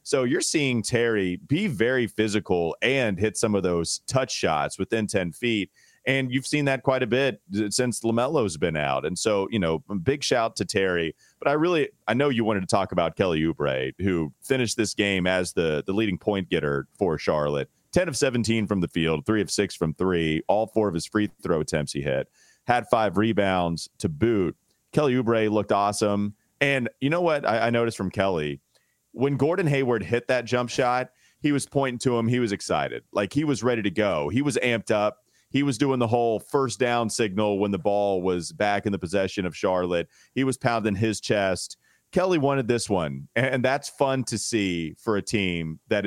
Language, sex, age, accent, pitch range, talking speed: English, male, 30-49, American, 95-125 Hz, 205 wpm